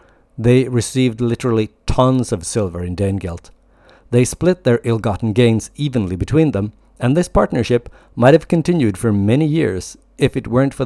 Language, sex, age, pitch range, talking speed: English, male, 50-69, 100-130 Hz, 160 wpm